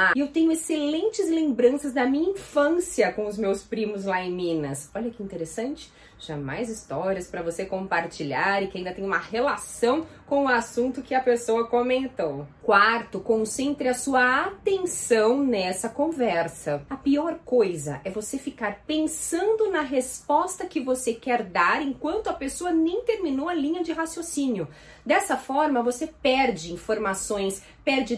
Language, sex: Portuguese, female